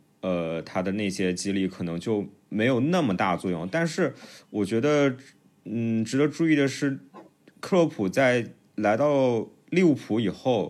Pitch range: 95-145 Hz